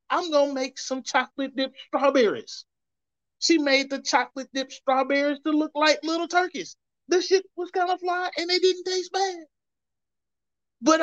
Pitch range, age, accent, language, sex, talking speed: 210-320 Hz, 30-49, American, English, male, 170 wpm